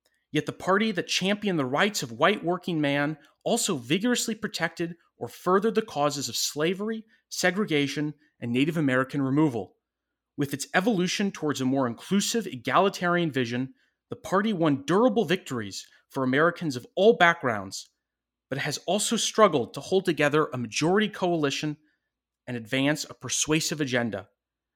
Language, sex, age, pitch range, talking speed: English, male, 30-49, 135-185 Hz, 145 wpm